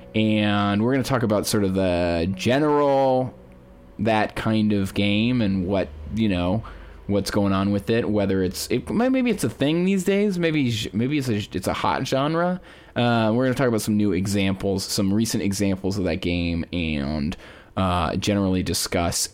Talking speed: 175 wpm